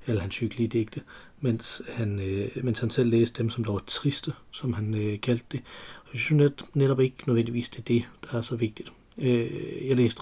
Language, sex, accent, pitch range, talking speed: Danish, male, native, 110-130 Hz, 205 wpm